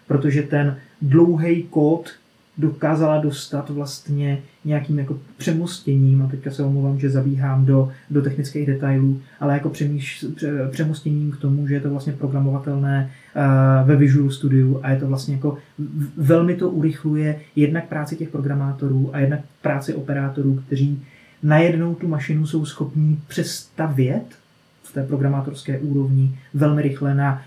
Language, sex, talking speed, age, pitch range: Czech, male, 145 wpm, 20-39, 135-150 Hz